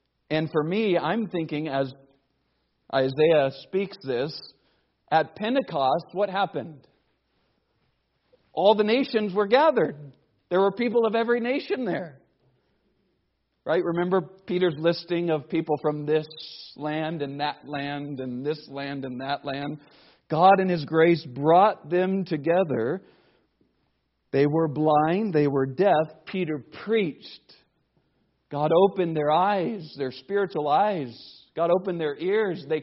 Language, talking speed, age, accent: English, 130 wpm, 50-69, American